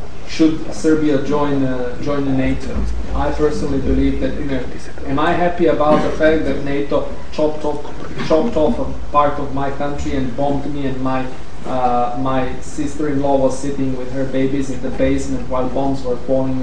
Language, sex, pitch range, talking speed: English, male, 130-145 Hz, 175 wpm